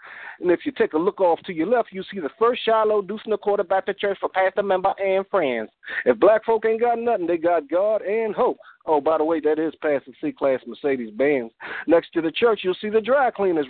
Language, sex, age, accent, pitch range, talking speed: English, male, 40-59, American, 160-250 Hz, 255 wpm